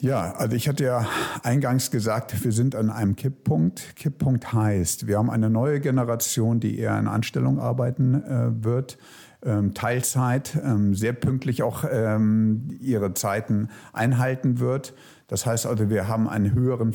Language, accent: German, German